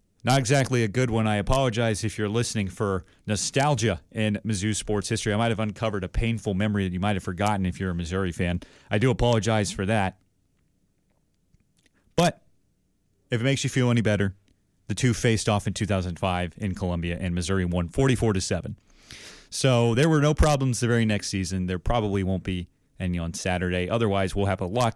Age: 30-49